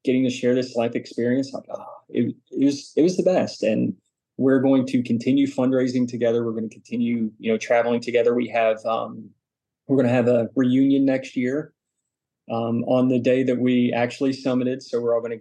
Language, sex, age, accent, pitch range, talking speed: English, male, 20-39, American, 115-125 Hz, 205 wpm